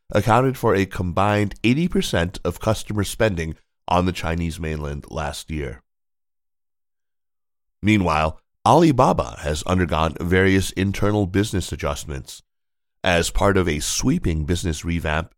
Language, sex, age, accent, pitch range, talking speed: English, male, 30-49, American, 80-105 Hz, 115 wpm